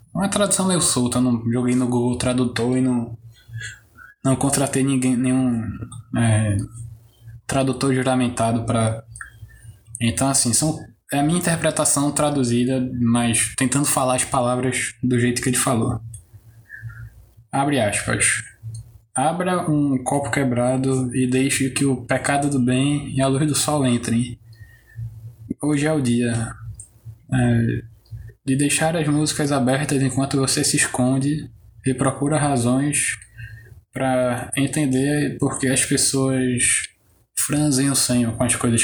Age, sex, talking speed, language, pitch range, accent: 10-29, male, 130 wpm, Portuguese, 115-140 Hz, Brazilian